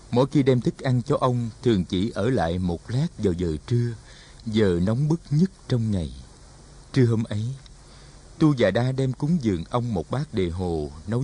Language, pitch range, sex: Vietnamese, 95-140 Hz, male